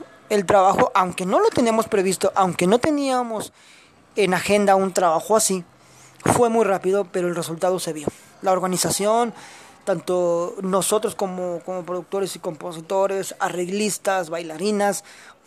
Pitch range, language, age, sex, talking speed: 175-205 Hz, Spanish, 20-39, male, 130 wpm